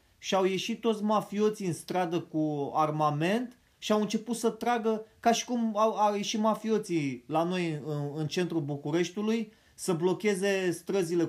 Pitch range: 155-210 Hz